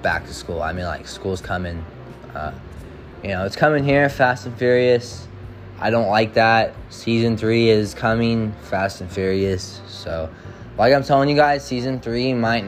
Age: 20-39